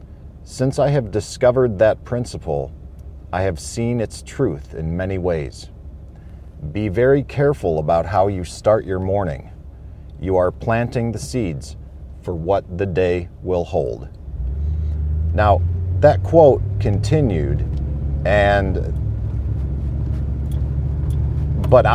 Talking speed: 110 wpm